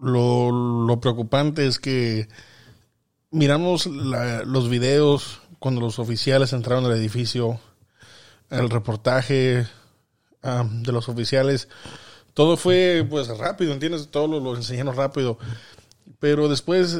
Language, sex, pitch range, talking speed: Spanish, male, 120-140 Hz, 115 wpm